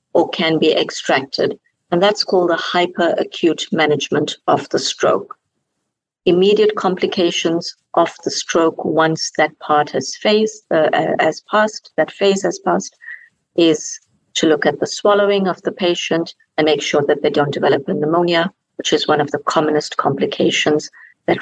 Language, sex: English, female